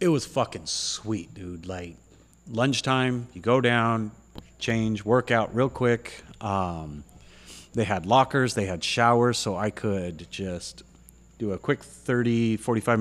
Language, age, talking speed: English, 30-49, 140 wpm